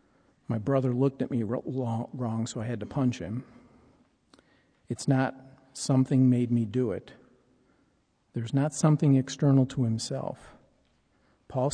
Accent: American